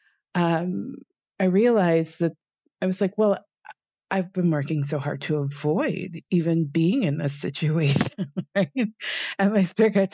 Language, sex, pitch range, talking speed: English, female, 155-185 Hz, 150 wpm